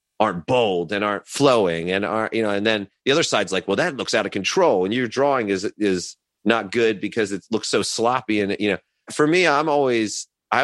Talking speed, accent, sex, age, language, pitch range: 230 wpm, American, male, 30-49, English, 100-130 Hz